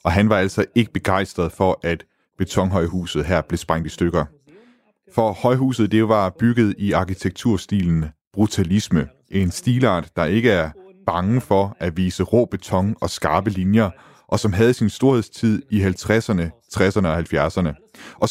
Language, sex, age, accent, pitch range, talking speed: Danish, male, 30-49, native, 95-115 Hz, 155 wpm